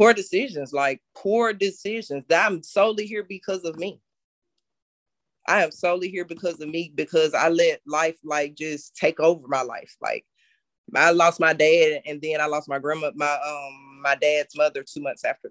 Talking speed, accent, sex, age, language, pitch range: 185 wpm, American, female, 20-39, English, 140-165 Hz